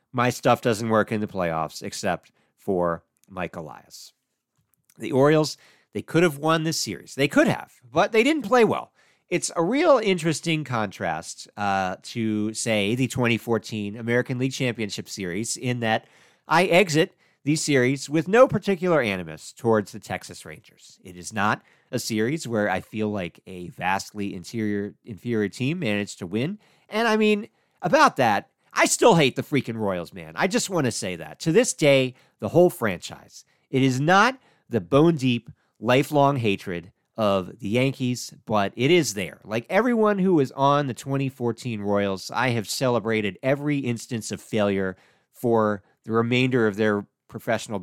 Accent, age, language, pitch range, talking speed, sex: American, 50-69, English, 105-155 Hz, 165 wpm, male